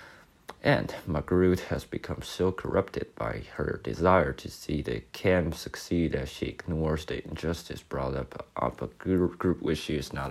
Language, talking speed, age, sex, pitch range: English, 180 wpm, 20-39, male, 85-110 Hz